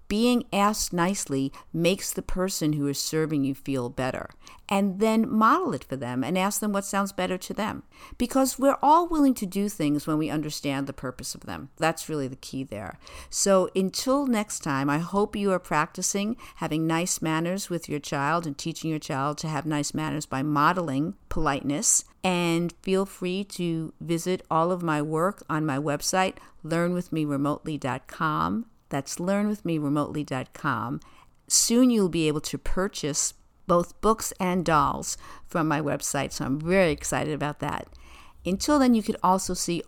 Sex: female